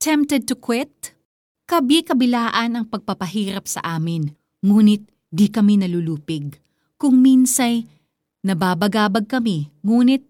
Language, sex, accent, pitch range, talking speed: Filipino, female, native, 170-230 Hz, 100 wpm